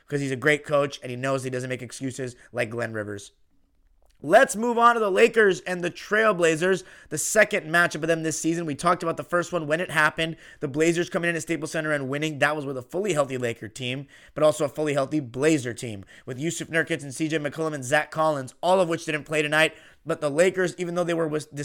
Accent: American